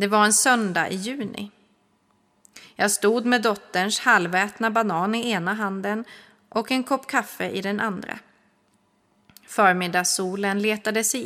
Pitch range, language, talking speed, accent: 195-235 Hz, Swedish, 135 wpm, native